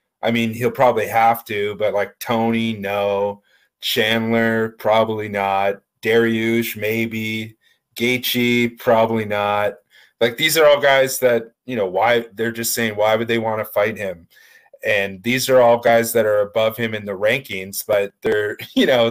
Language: English